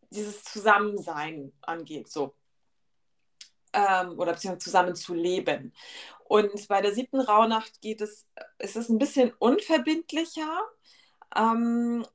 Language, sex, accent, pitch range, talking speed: German, female, German, 200-230 Hz, 105 wpm